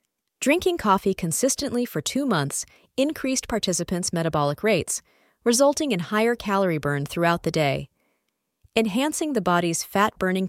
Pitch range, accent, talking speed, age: 165-245 Hz, American, 125 wpm, 30-49